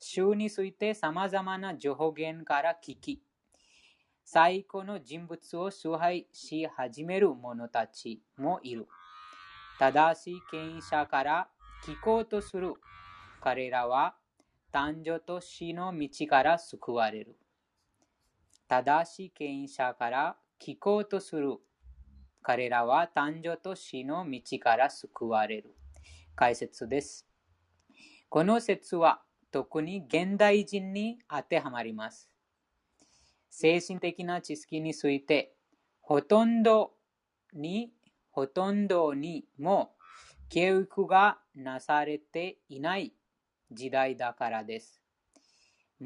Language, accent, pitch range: Japanese, Indian, 130-185 Hz